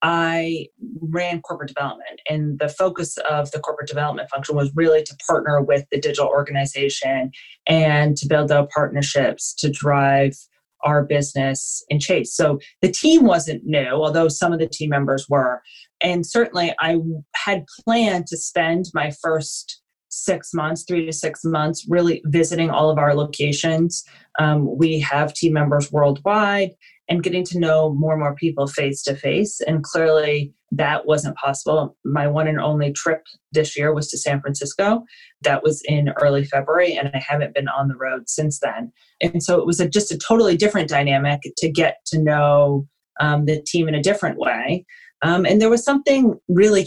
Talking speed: 175 wpm